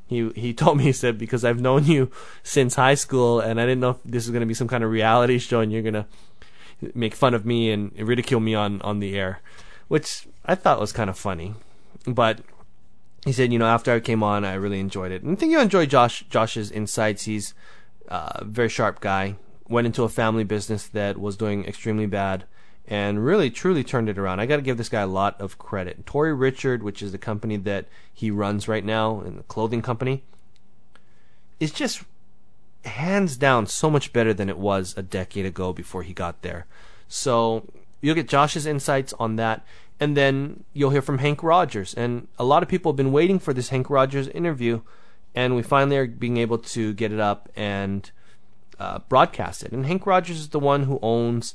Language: English